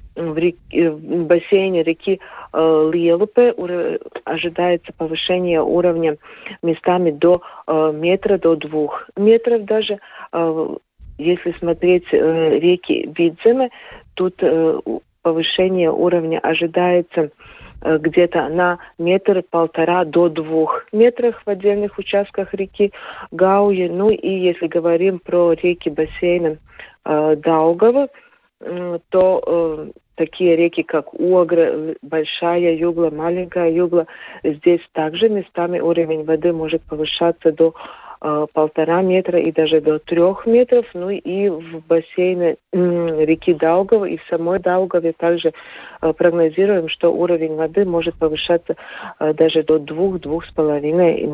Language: Russian